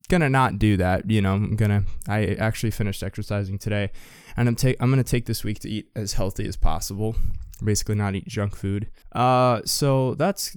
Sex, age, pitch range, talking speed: male, 20-39, 100-125 Hz, 200 wpm